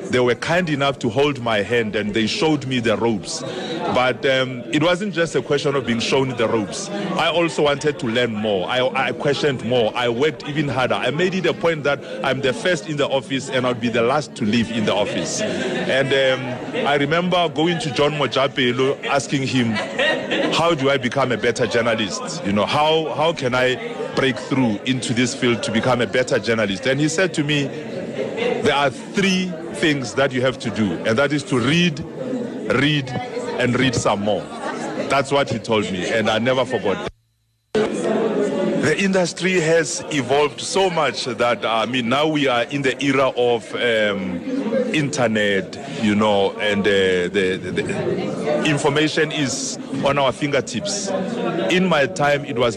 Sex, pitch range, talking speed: male, 120-155 Hz, 185 wpm